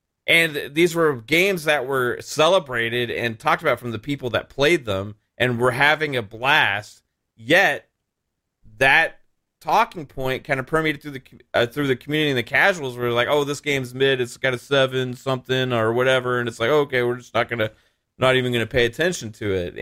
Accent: American